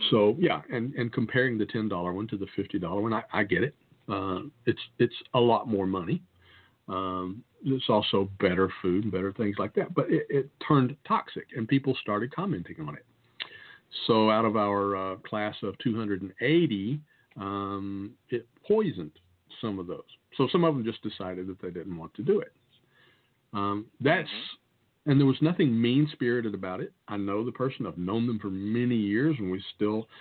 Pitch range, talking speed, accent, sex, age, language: 100-140 Hz, 185 wpm, American, male, 50-69, English